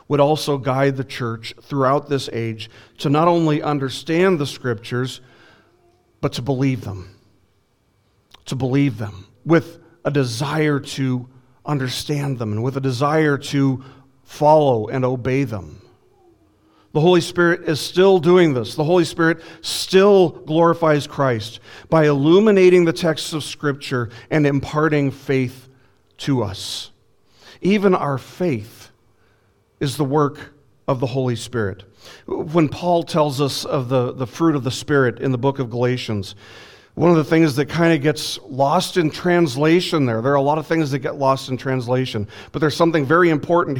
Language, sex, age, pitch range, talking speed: English, male, 40-59, 125-155 Hz, 155 wpm